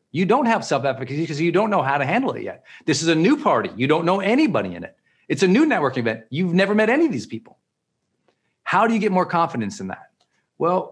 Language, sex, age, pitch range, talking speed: English, male, 40-59, 155-215 Hz, 245 wpm